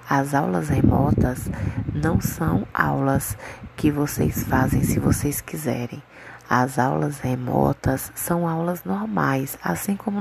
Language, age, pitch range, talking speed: Portuguese, 20-39, 130-180 Hz, 120 wpm